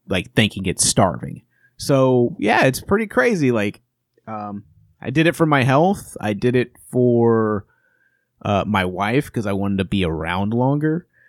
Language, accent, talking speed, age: English, American, 165 wpm, 30-49